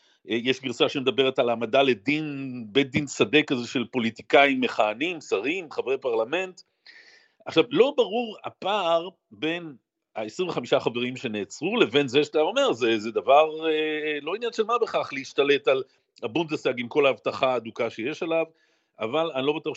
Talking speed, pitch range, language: 150 wpm, 135-200 Hz, Hebrew